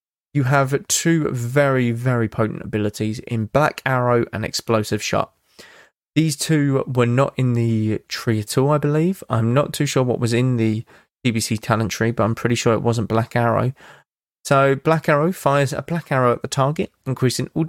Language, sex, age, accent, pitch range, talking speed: English, male, 20-39, British, 115-140 Hz, 185 wpm